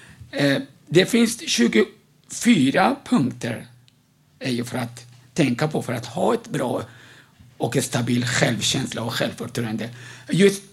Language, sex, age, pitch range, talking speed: Swedish, male, 60-79, 125-150 Hz, 125 wpm